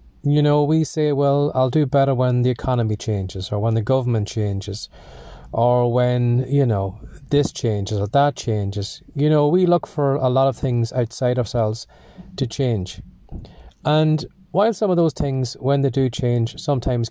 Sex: male